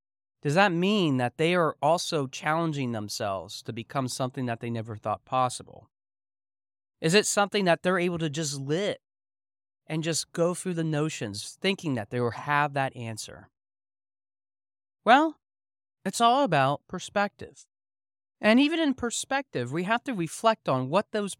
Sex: male